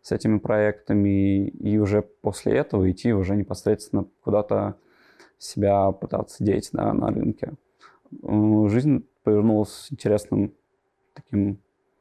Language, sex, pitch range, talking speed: Russian, male, 100-115 Hz, 100 wpm